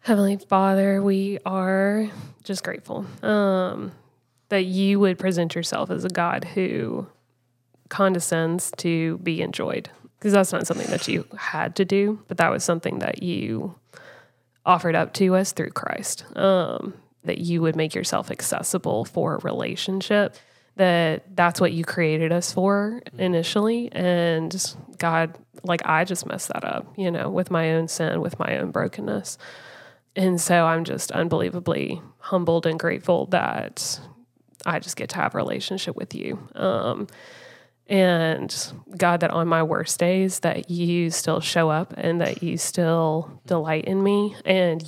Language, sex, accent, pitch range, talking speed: English, female, American, 165-195 Hz, 155 wpm